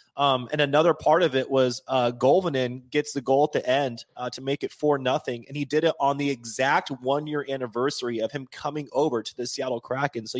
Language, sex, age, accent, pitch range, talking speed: English, male, 20-39, American, 130-150 Hz, 225 wpm